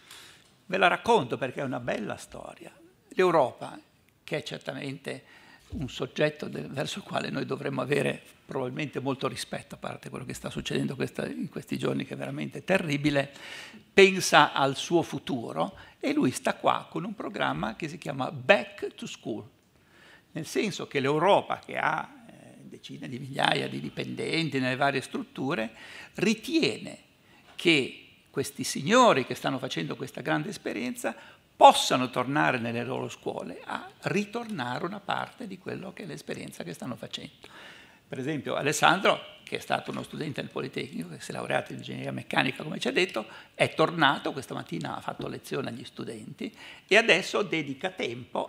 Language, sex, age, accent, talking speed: Italian, male, 60-79, native, 160 wpm